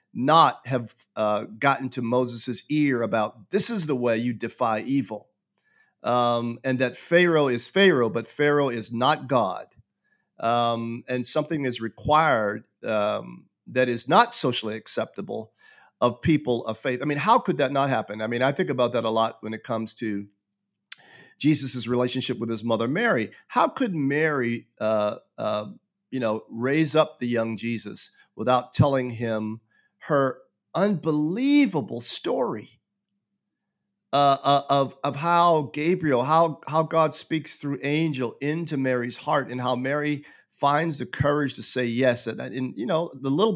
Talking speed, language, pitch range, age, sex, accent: 155 wpm, English, 120-155 Hz, 50-69, male, American